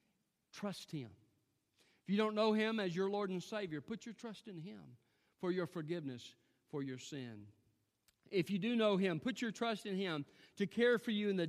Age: 40-59